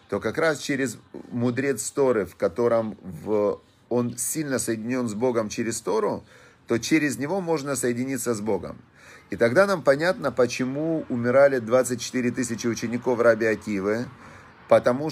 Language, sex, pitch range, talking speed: Russian, male, 110-130 Hz, 130 wpm